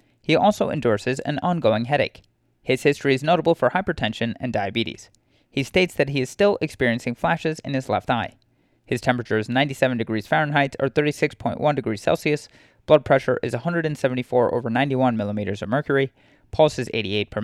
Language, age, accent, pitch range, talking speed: English, 30-49, American, 115-155 Hz, 170 wpm